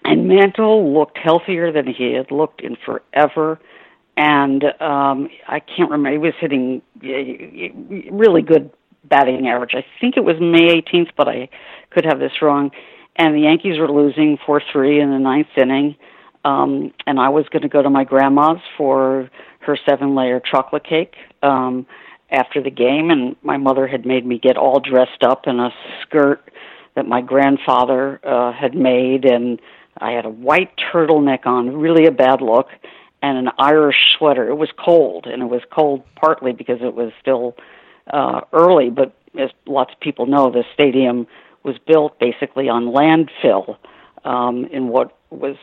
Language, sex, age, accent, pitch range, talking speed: English, female, 50-69, American, 130-155 Hz, 170 wpm